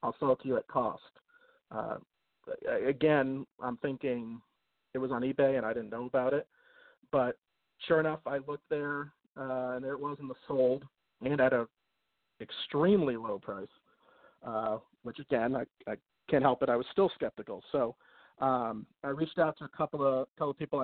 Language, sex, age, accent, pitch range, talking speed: English, male, 40-59, American, 125-150 Hz, 185 wpm